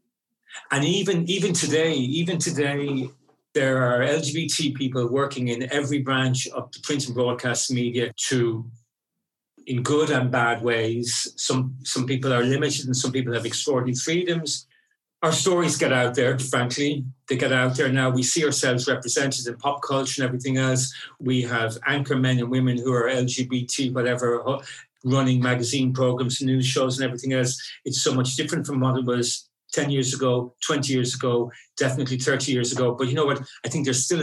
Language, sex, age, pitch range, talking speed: English, male, 40-59, 125-150 Hz, 180 wpm